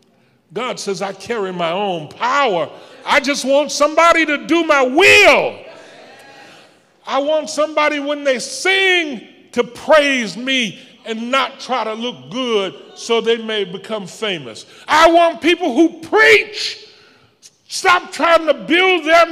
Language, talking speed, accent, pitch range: English, 140 wpm, American, 170-280 Hz